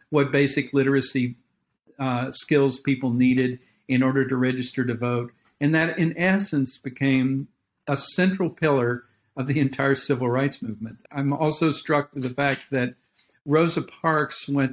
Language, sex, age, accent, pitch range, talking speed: English, male, 50-69, American, 125-145 Hz, 150 wpm